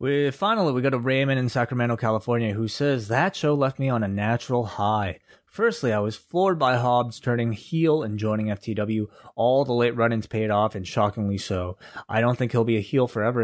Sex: male